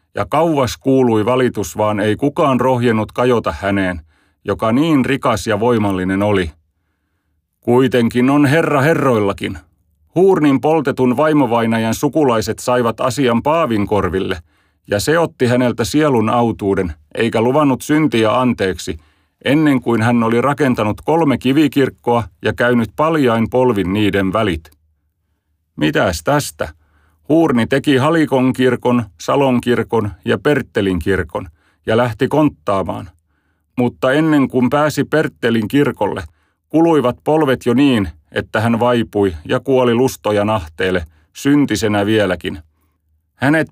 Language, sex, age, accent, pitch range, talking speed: Finnish, male, 40-59, native, 95-130 Hz, 115 wpm